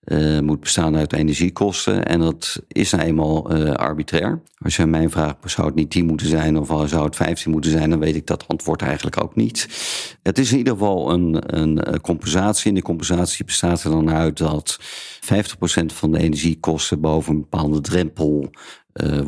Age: 50-69